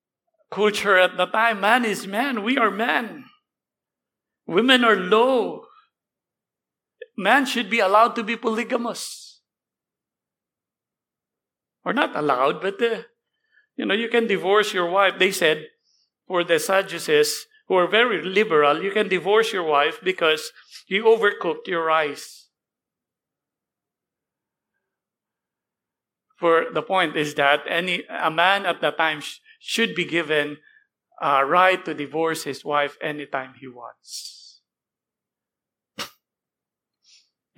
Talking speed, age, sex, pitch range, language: 120 wpm, 50-69, male, 150-225 Hz, English